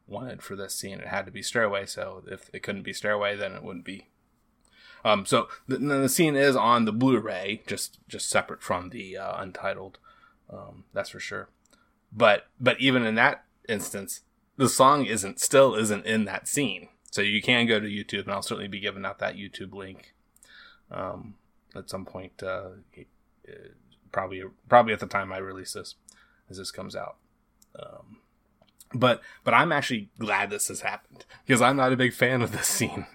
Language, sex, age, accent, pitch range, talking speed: English, male, 20-39, American, 100-125 Hz, 190 wpm